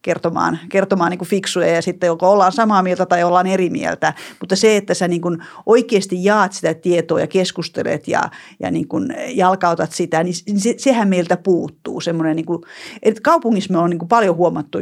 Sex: female